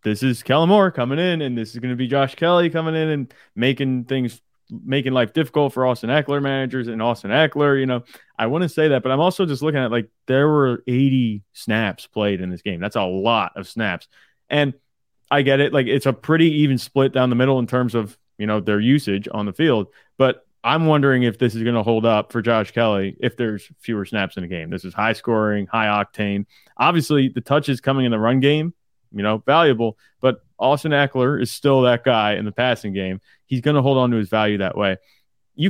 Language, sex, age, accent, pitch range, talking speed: English, male, 20-39, American, 110-135 Hz, 230 wpm